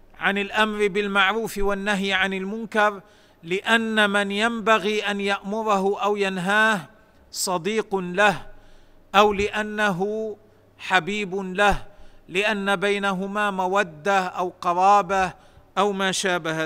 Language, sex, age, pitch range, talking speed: Arabic, male, 50-69, 170-205 Hz, 95 wpm